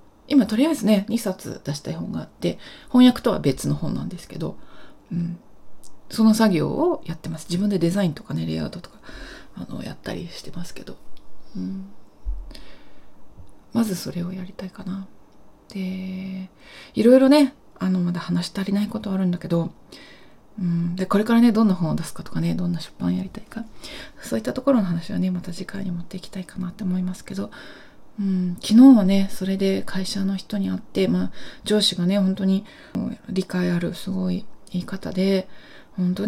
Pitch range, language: 175-215 Hz, Japanese